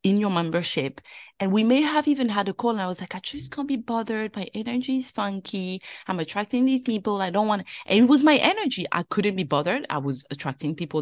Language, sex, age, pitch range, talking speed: English, female, 30-49, 160-220 Hz, 240 wpm